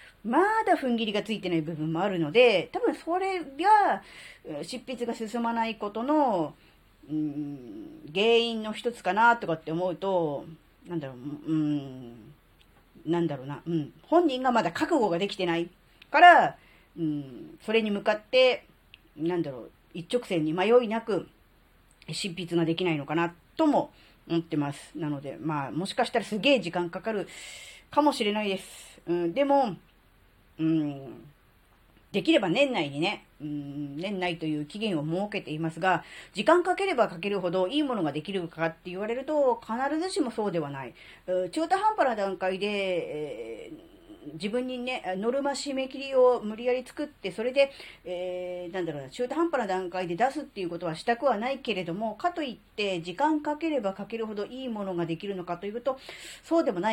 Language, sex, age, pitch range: Japanese, female, 40-59, 165-255 Hz